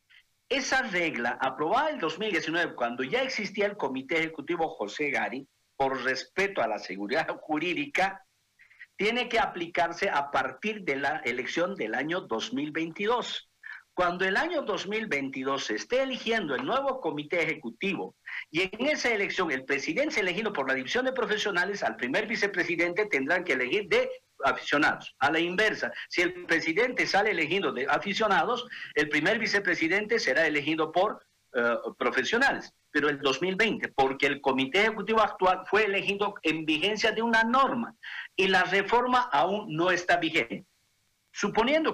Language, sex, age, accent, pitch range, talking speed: Spanish, male, 50-69, Mexican, 160-230 Hz, 145 wpm